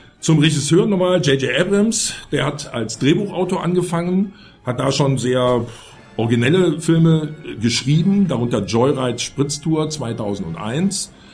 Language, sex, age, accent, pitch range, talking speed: German, male, 50-69, German, 110-140 Hz, 110 wpm